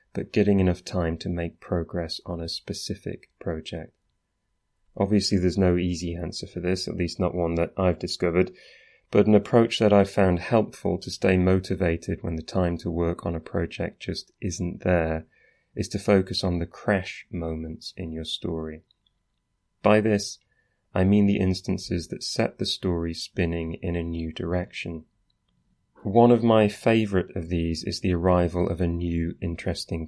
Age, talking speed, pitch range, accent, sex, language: 30-49, 170 wpm, 85-100 Hz, British, male, English